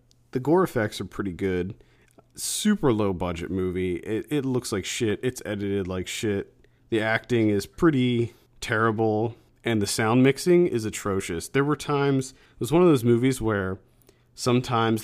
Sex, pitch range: male, 95-120 Hz